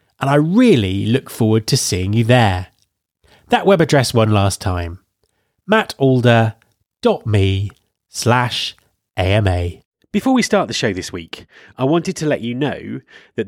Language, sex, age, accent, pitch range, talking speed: English, male, 30-49, British, 100-145 Hz, 140 wpm